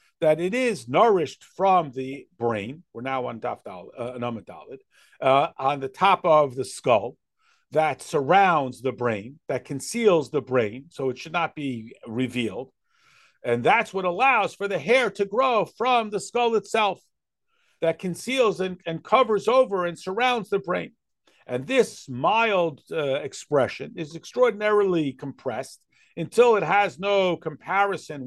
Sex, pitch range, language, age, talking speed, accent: male, 140-210 Hz, English, 50-69, 140 wpm, American